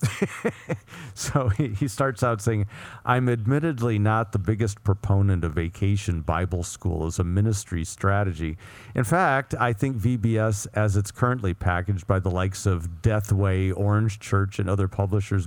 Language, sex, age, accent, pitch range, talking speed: English, male, 50-69, American, 95-120 Hz, 150 wpm